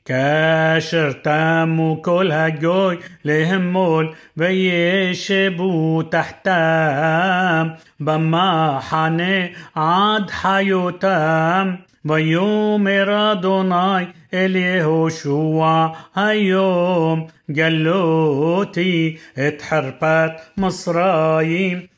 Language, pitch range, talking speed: Hebrew, 160-185 Hz, 50 wpm